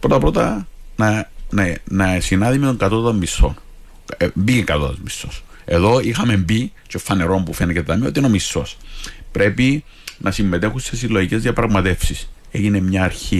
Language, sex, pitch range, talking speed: Greek, male, 85-115 Hz, 145 wpm